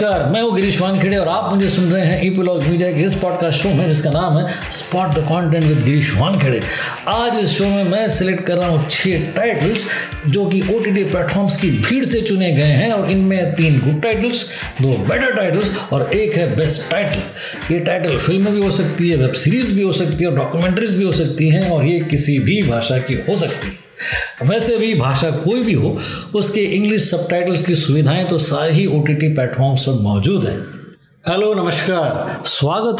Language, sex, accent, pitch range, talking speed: Hindi, male, native, 155-195 Hz, 200 wpm